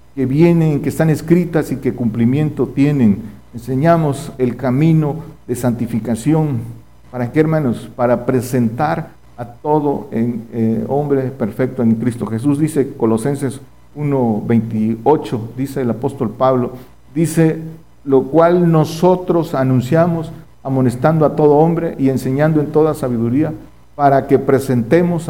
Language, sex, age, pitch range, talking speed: Spanish, male, 50-69, 120-150 Hz, 125 wpm